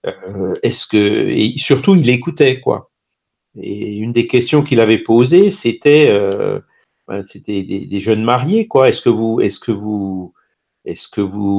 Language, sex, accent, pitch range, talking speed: French, male, French, 100-145 Hz, 170 wpm